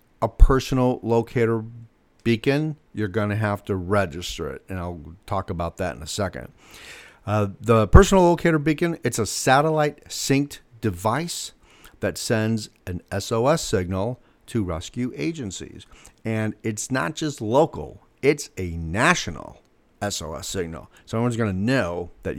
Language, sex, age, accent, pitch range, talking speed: English, male, 50-69, American, 95-120 Hz, 140 wpm